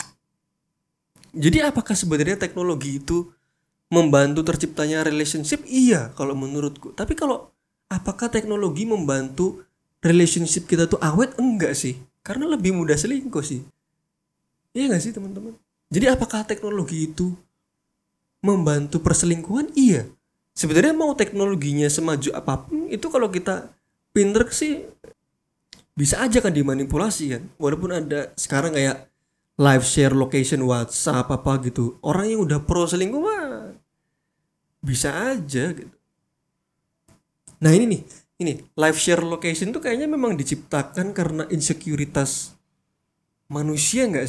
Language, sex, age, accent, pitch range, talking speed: Indonesian, male, 20-39, native, 150-200 Hz, 120 wpm